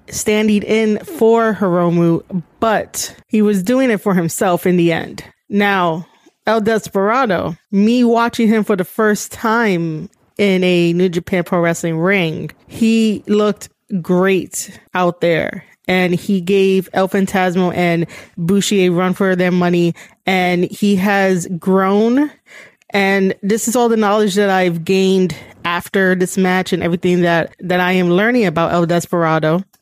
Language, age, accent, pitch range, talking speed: English, 20-39, American, 175-210 Hz, 150 wpm